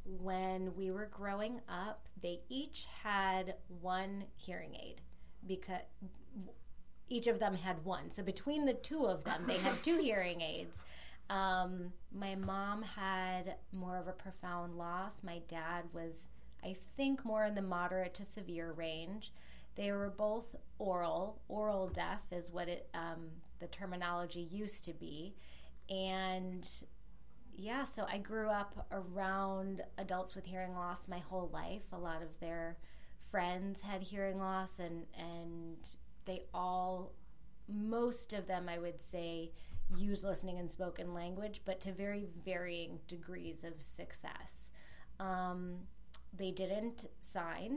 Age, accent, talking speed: 30-49, American, 140 wpm